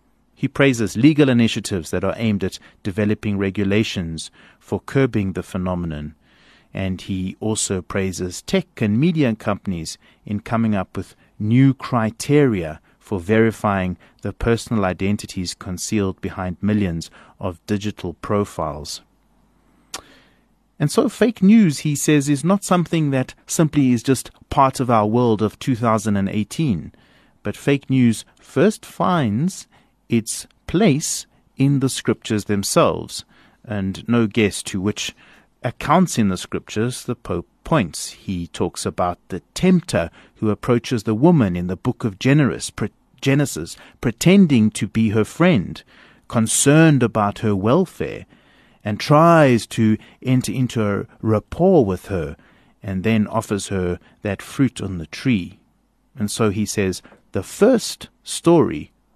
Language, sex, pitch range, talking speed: English, male, 95-135 Hz, 130 wpm